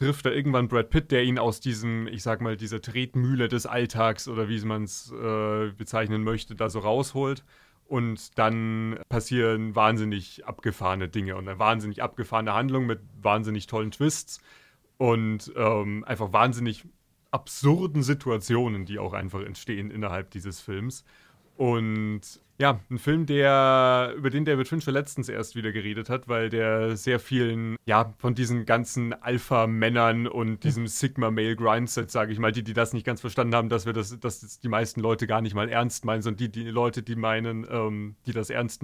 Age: 30-49